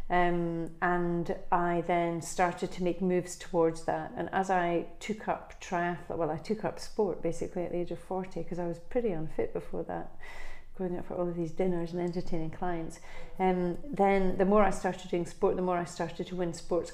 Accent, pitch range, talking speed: British, 170-180 Hz, 205 wpm